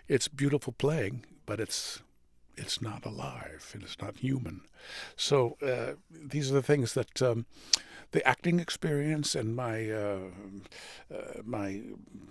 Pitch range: 105-125 Hz